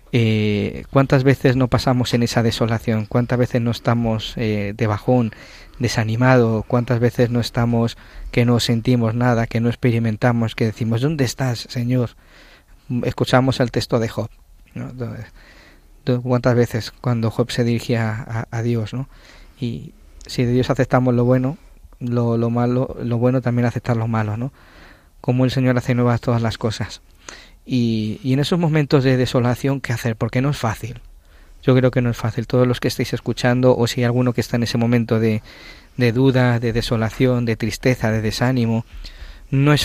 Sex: male